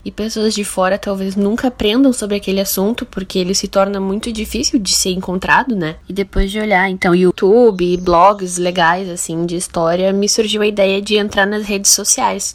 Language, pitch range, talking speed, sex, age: Portuguese, 185-225 Hz, 195 wpm, female, 10-29